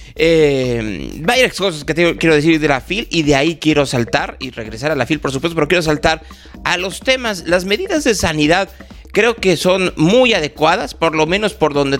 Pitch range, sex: 140-185 Hz, male